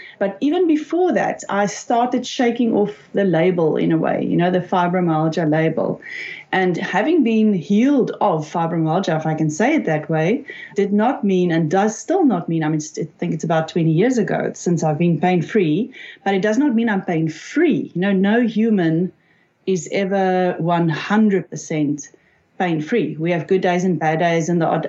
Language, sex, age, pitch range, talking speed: English, female, 30-49, 165-220 Hz, 185 wpm